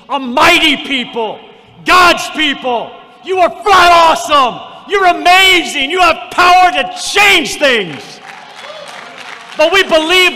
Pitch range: 215-305 Hz